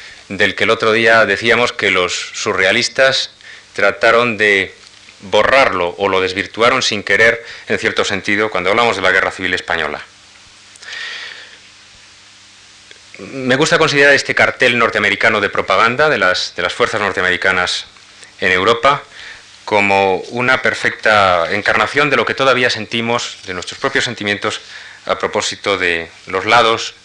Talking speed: 135 wpm